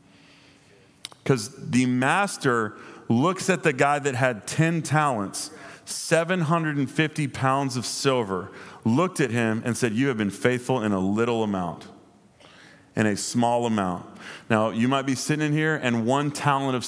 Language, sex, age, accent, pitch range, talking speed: English, male, 40-59, American, 110-140 Hz, 155 wpm